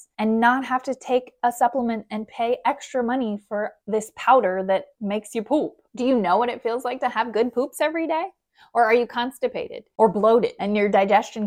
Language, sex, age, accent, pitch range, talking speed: English, female, 20-39, American, 190-250 Hz, 210 wpm